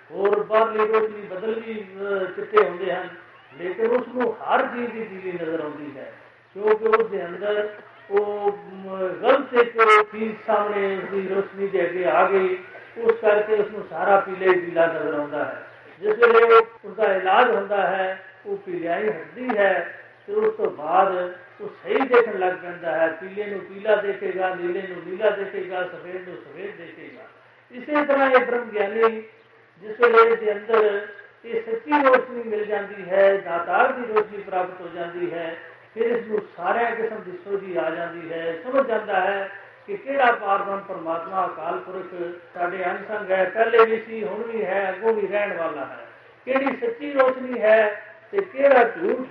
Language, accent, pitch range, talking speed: Hindi, native, 185-225 Hz, 135 wpm